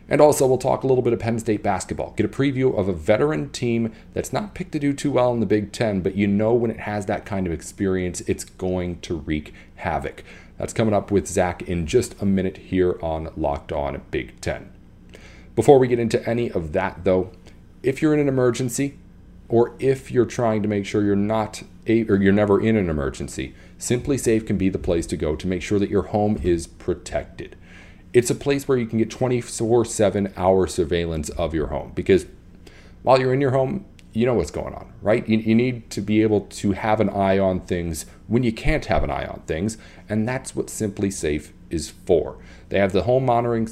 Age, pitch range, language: 40-59, 90-115 Hz, English